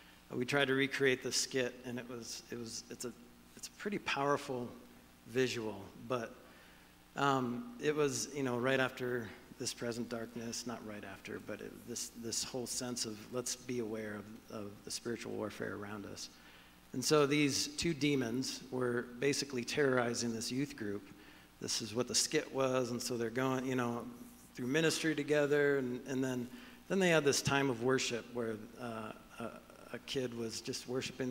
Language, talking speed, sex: English, 180 wpm, male